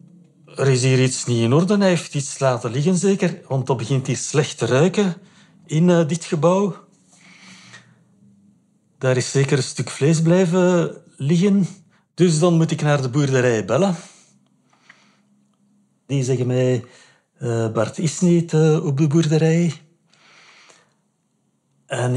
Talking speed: 140 wpm